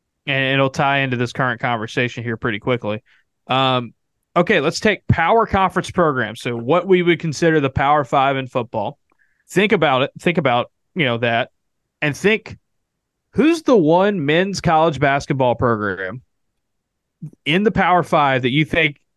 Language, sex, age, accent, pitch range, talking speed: English, male, 20-39, American, 125-160 Hz, 160 wpm